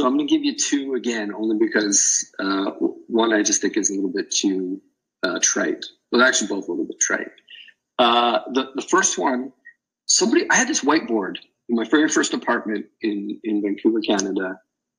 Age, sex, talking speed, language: 40-59, male, 190 wpm, English